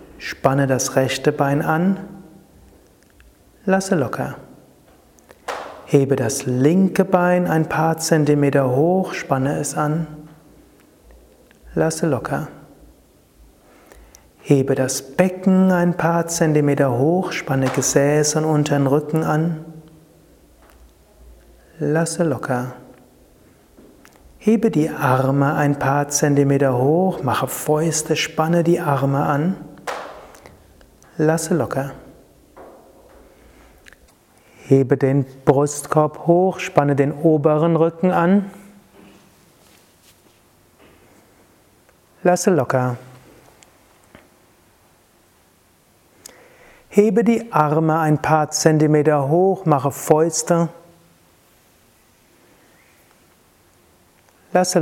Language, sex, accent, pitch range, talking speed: German, male, German, 135-170 Hz, 80 wpm